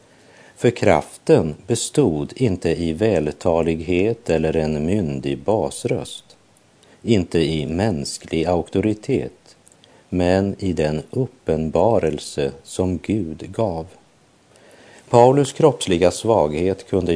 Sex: male